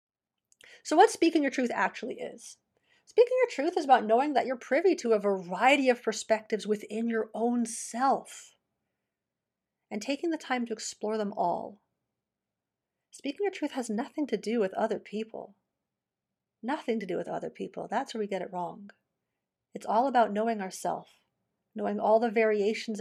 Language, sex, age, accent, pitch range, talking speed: English, female, 40-59, American, 215-270 Hz, 165 wpm